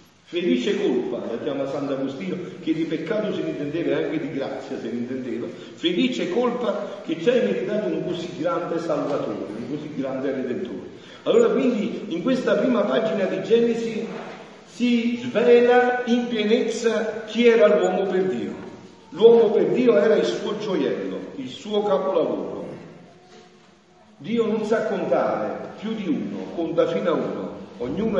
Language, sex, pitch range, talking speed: Italian, male, 180-230 Hz, 145 wpm